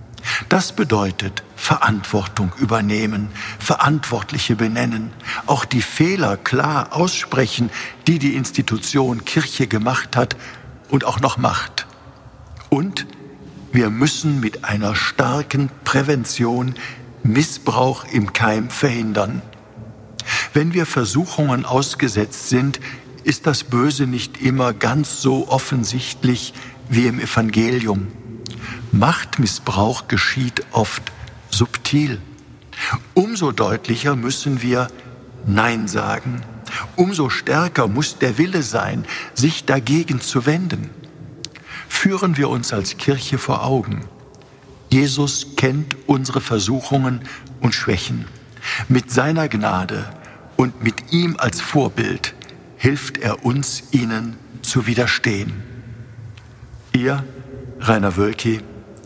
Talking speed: 100 wpm